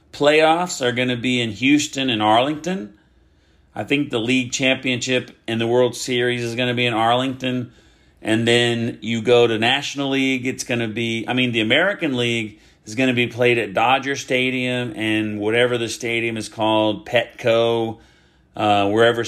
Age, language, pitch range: 40-59, English, 105-130 Hz